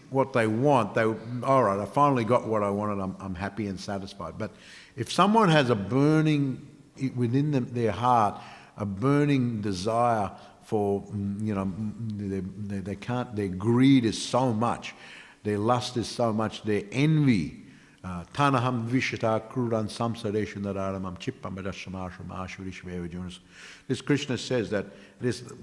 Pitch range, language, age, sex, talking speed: 100-140 Hz, English, 60-79, male, 135 wpm